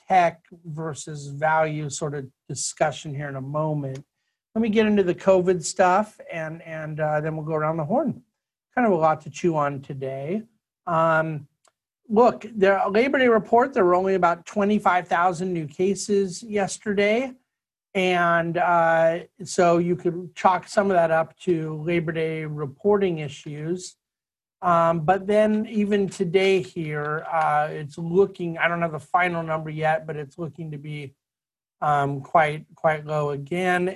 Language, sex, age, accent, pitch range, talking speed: English, male, 50-69, American, 150-190 Hz, 155 wpm